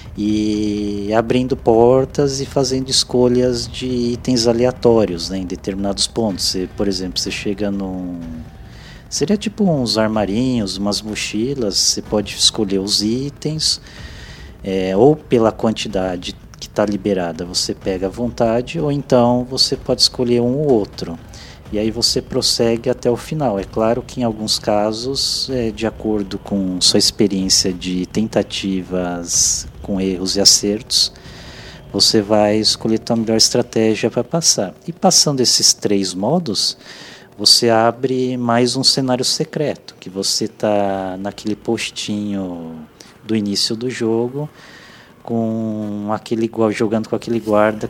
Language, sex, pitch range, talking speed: Portuguese, male, 100-125 Hz, 135 wpm